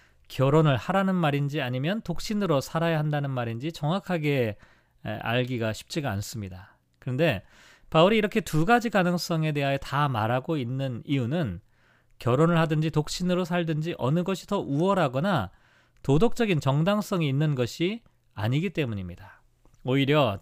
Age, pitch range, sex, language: 40-59, 130-185 Hz, male, Korean